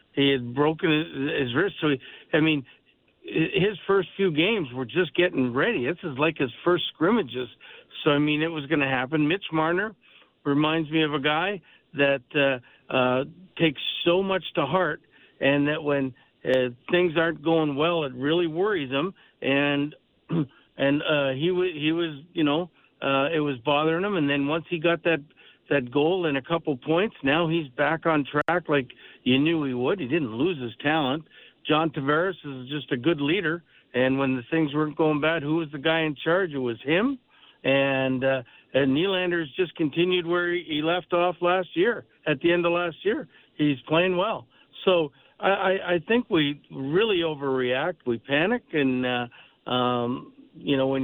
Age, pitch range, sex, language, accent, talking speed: 60-79, 140-175 Hz, male, English, American, 190 wpm